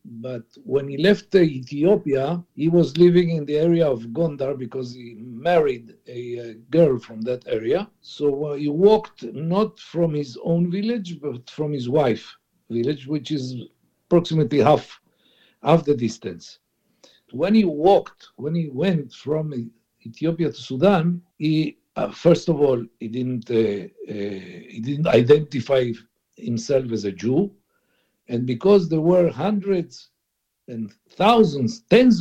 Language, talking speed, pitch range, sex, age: English, 140 wpm, 125-190 Hz, male, 60-79